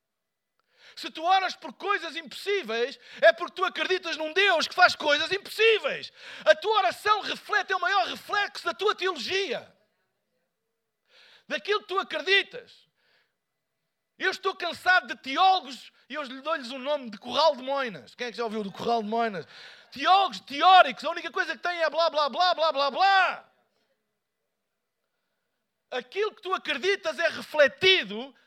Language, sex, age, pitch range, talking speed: Portuguese, male, 50-69, 285-370 Hz, 160 wpm